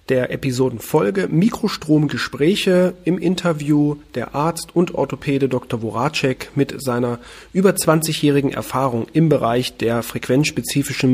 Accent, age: German, 40-59